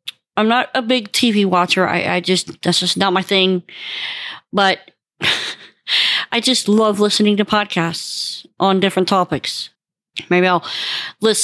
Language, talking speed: English, 140 wpm